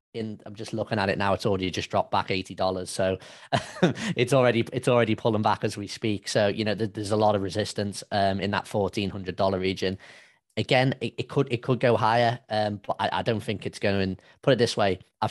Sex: male